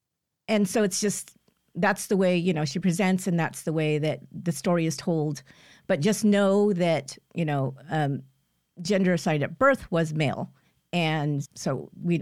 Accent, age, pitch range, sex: American, 50-69, 150-190 Hz, female